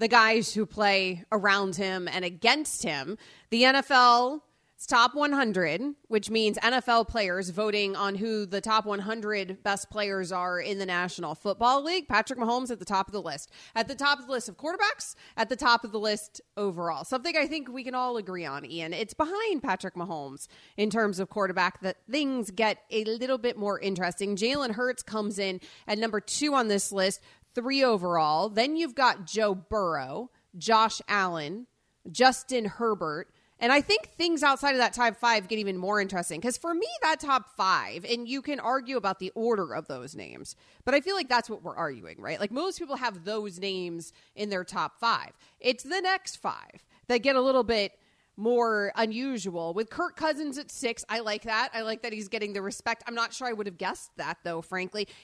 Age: 30-49